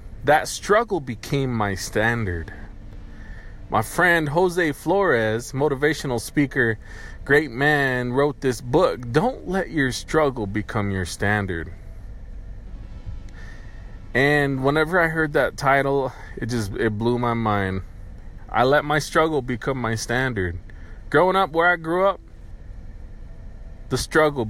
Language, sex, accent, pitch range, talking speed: English, male, American, 95-145 Hz, 120 wpm